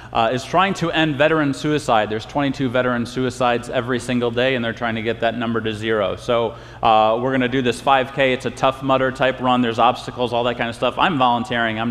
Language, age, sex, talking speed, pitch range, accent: English, 30-49, male, 230 wpm, 115-140 Hz, American